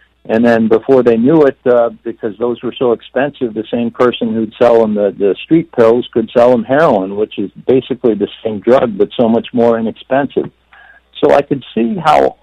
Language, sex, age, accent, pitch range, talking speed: English, male, 60-79, American, 110-140 Hz, 205 wpm